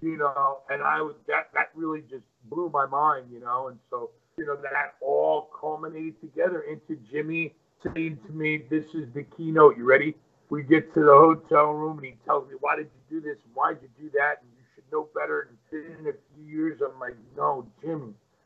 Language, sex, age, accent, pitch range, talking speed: English, male, 50-69, American, 130-180 Hz, 220 wpm